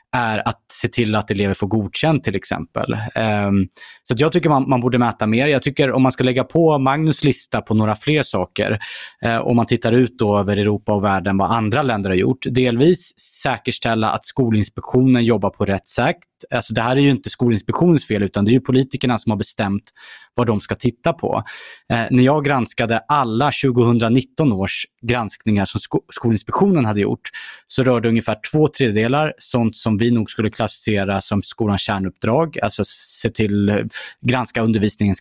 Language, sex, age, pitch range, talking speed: Swedish, male, 30-49, 105-130 Hz, 180 wpm